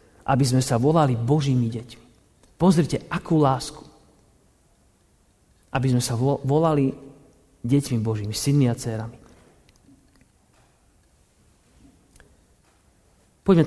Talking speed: 85 wpm